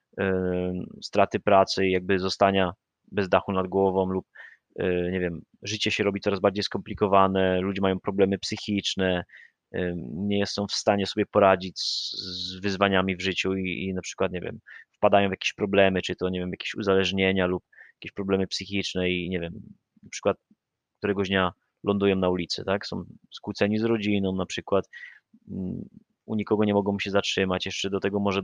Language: Polish